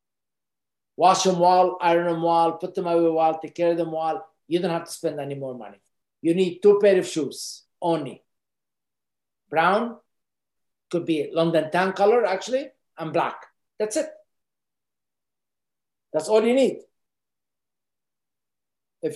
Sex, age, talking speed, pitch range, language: male, 50-69, 145 wpm, 155-185 Hz, English